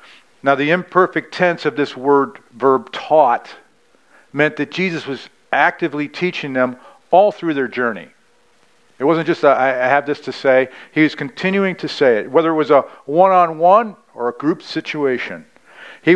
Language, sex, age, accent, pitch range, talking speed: English, male, 50-69, American, 125-165 Hz, 165 wpm